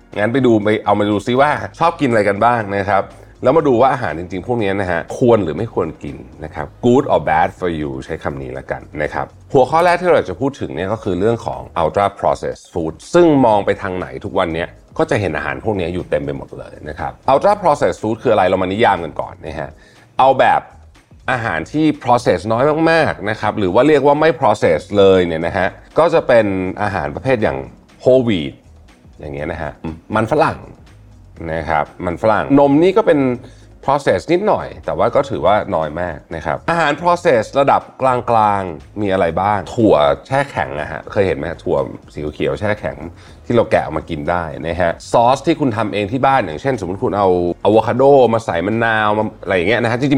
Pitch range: 85-130 Hz